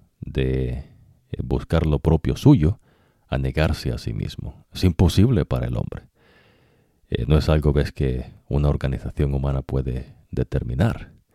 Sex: male